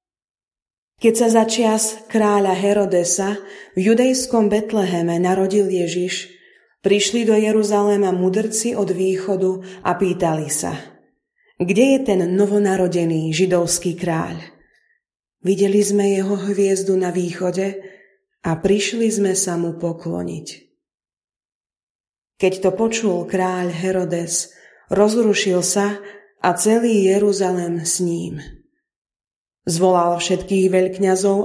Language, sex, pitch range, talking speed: Slovak, female, 180-205 Hz, 100 wpm